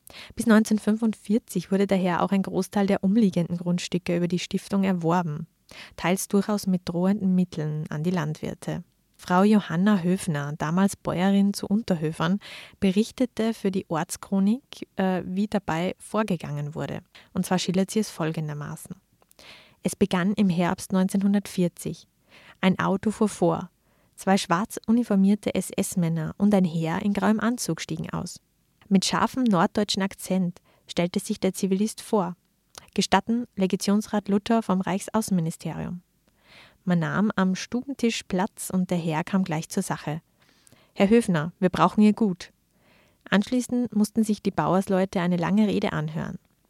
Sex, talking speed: female, 135 wpm